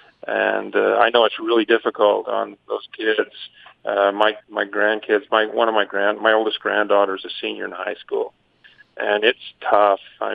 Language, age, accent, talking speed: English, 40-59, American, 185 wpm